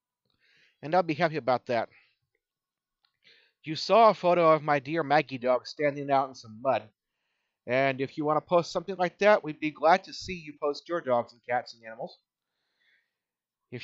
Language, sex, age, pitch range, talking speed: English, male, 30-49, 145-180 Hz, 185 wpm